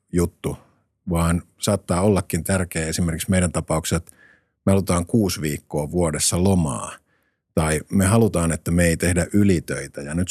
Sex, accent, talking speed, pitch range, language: male, native, 145 wpm, 80-95 Hz, Finnish